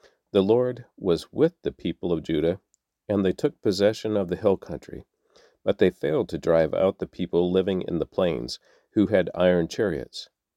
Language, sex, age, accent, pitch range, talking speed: English, male, 50-69, American, 90-110 Hz, 180 wpm